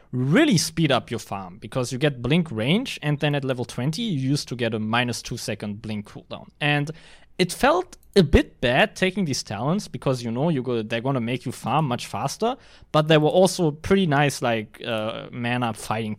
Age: 20-39